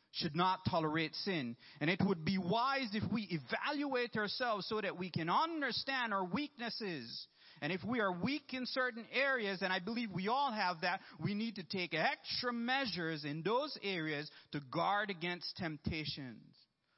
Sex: male